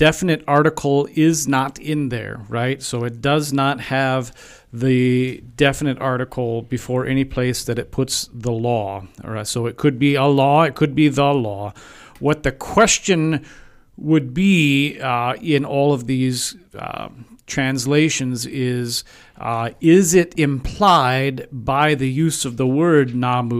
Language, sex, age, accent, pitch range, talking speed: English, male, 40-59, American, 120-145 Hz, 155 wpm